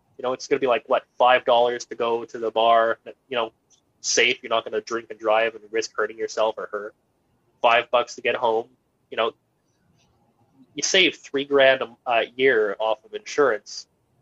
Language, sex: English, male